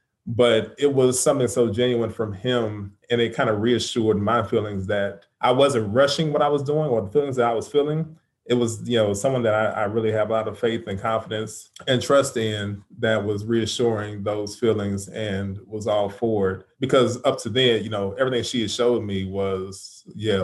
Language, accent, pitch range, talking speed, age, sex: English, American, 100-120 Hz, 210 wpm, 20-39, male